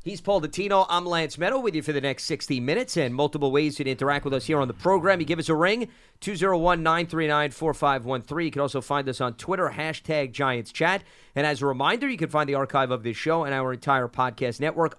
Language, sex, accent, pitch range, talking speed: English, male, American, 130-160 Hz, 225 wpm